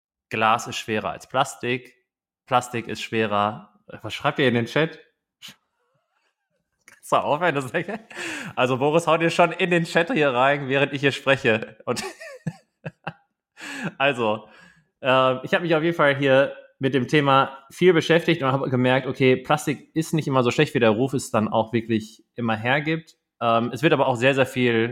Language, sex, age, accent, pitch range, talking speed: German, male, 30-49, German, 105-140 Hz, 180 wpm